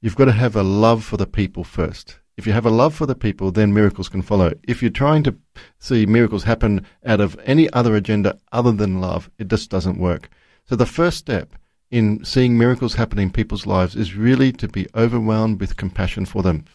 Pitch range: 100-120 Hz